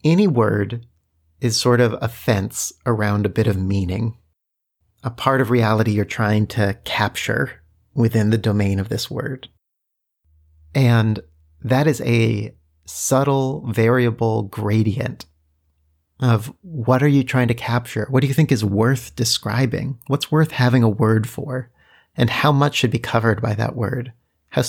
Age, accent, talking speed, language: 30-49, American, 155 wpm, English